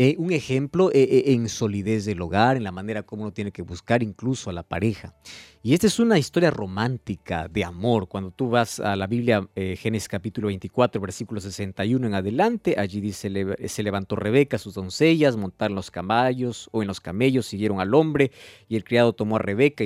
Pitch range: 105-145 Hz